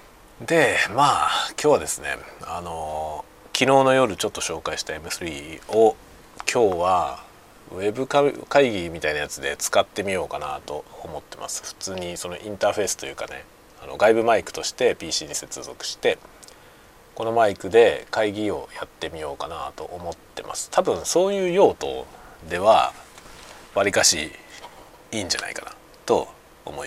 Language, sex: Japanese, male